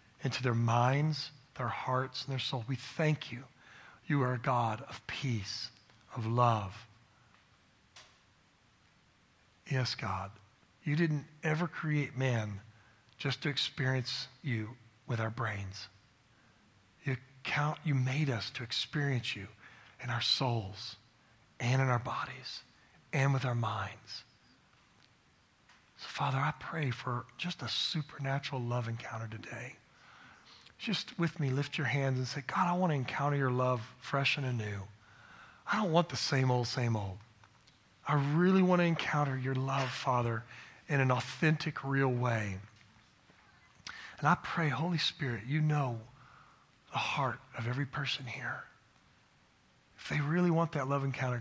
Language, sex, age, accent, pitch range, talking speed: English, male, 40-59, American, 115-140 Hz, 140 wpm